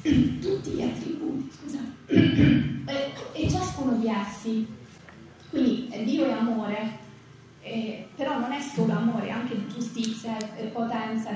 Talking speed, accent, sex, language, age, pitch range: 105 wpm, native, female, Italian, 20-39, 225-275 Hz